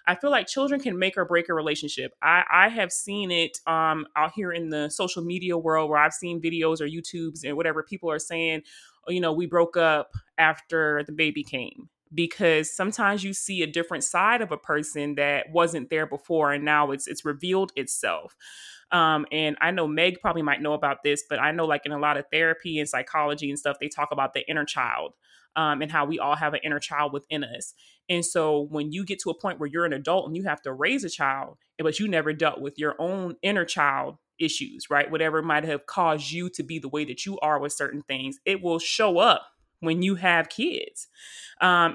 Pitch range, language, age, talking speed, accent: 150-185 Hz, English, 20-39, 225 wpm, American